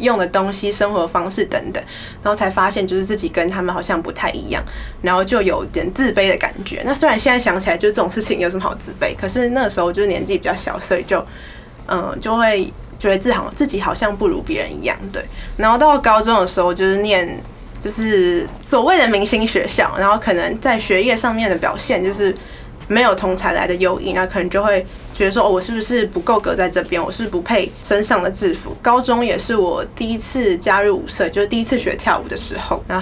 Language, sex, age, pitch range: Chinese, female, 20-39, 190-230 Hz